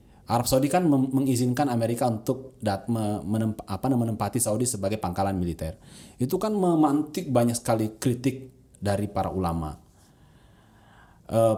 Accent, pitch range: native, 100-140 Hz